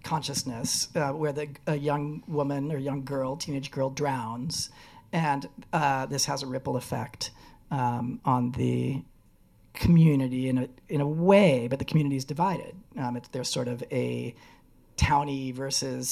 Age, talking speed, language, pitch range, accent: 40-59, 145 wpm, English, 125-150 Hz, American